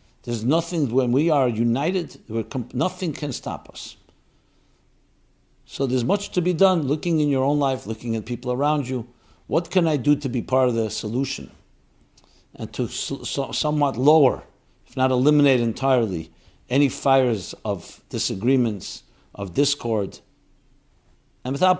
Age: 60-79